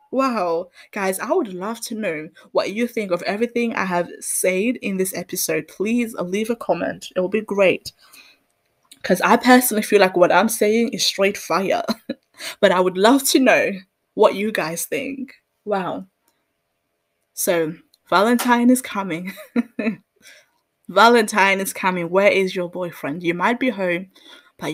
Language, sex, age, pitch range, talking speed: English, female, 10-29, 180-235 Hz, 155 wpm